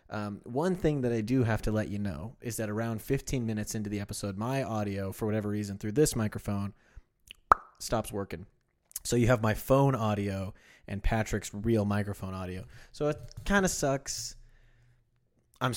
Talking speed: 175 wpm